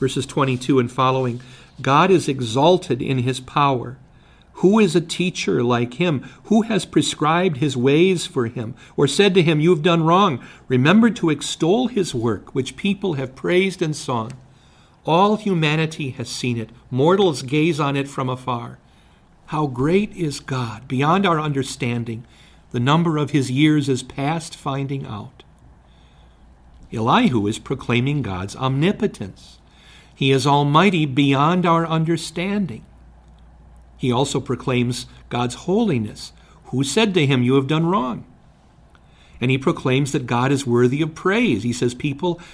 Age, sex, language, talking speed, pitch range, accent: 50-69, male, English, 145 wpm, 120-160 Hz, American